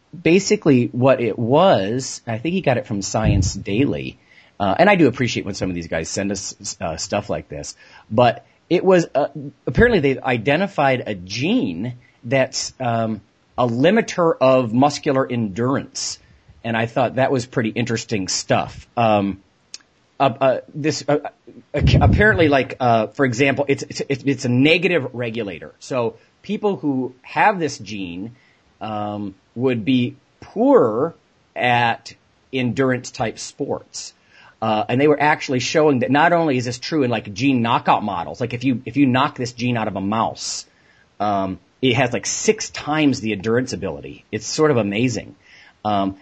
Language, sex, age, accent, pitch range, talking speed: English, male, 40-59, American, 105-140 Hz, 165 wpm